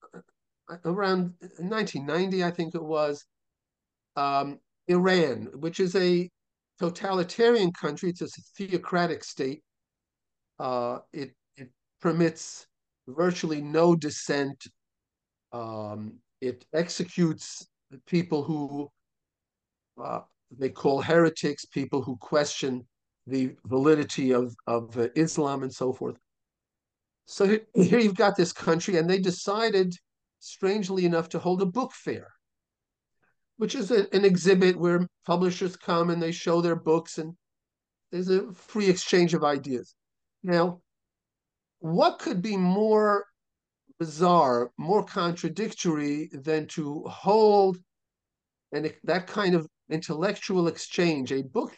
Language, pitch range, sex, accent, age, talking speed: English, 145-185 Hz, male, American, 50-69, 115 wpm